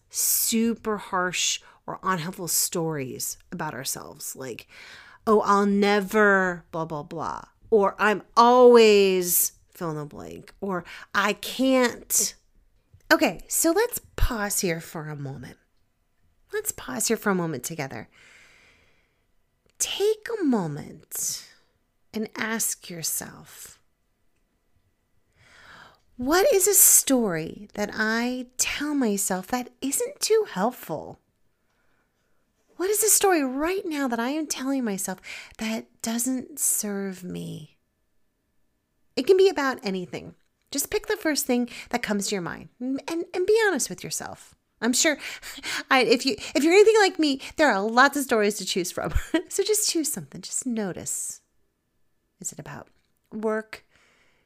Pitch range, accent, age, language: 190-290 Hz, American, 40-59, English